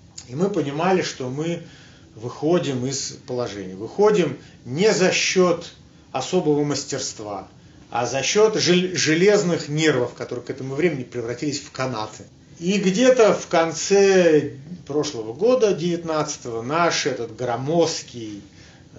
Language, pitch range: Russian, 125-175 Hz